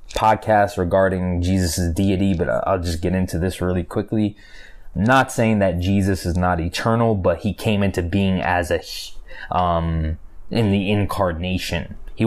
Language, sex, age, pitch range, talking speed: English, male, 20-39, 90-110 Hz, 155 wpm